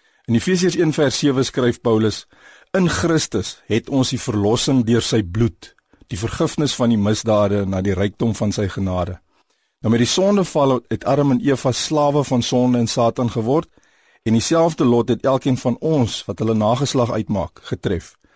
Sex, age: male, 50-69